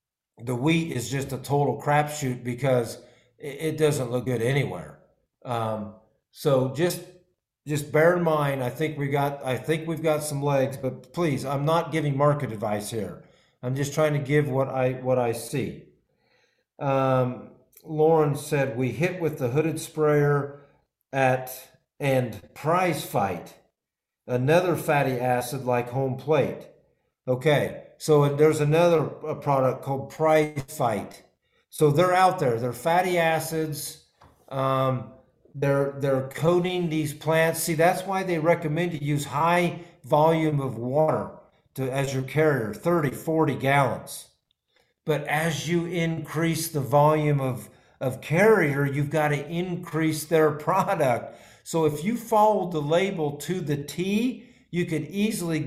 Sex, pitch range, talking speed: male, 130-160 Hz, 145 wpm